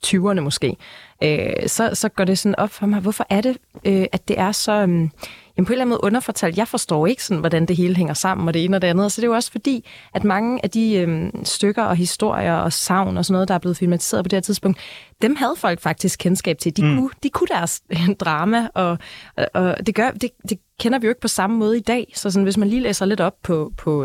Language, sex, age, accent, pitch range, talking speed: Danish, female, 20-39, native, 165-210 Hz, 270 wpm